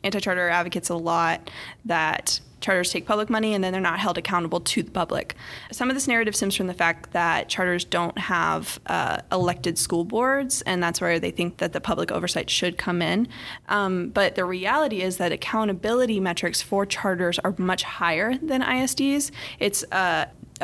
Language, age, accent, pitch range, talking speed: English, 20-39, American, 175-215 Hz, 185 wpm